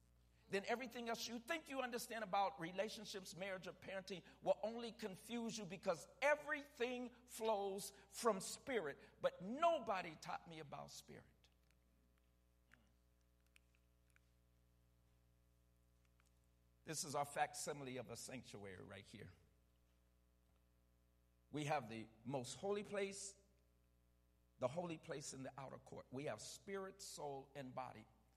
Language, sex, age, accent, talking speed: English, male, 50-69, American, 115 wpm